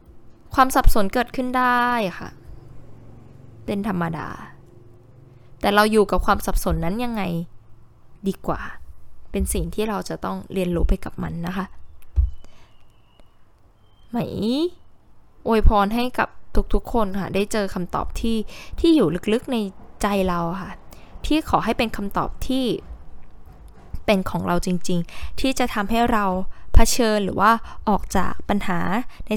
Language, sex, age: Thai, female, 10-29